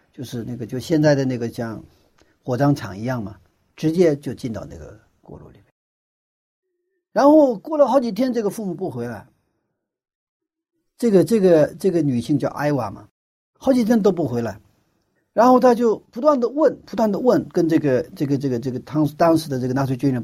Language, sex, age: Chinese, male, 50-69